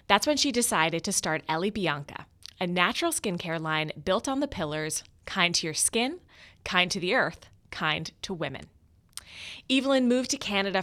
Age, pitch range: 20-39, 160-210 Hz